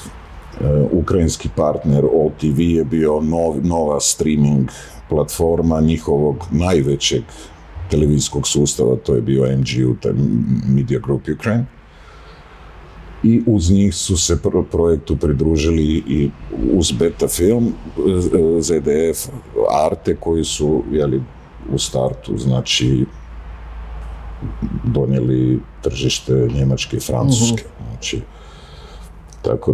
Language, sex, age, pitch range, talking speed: Croatian, male, 50-69, 65-85 Hz, 95 wpm